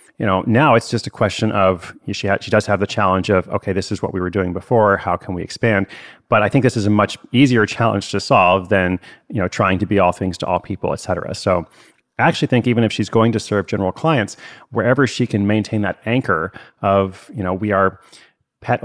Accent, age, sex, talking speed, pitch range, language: American, 30-49, male, 245 wpm, 100-125 Hz, English